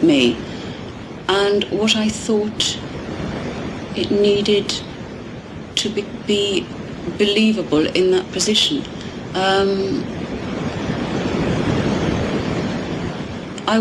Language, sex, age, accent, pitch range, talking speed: English, female, 30-49, British, 180-220 Hz, 70 wpm